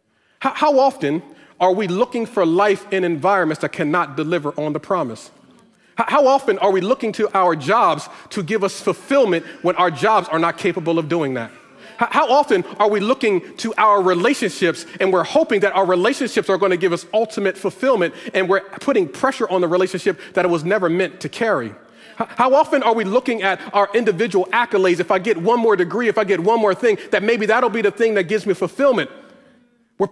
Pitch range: 180-235 Hz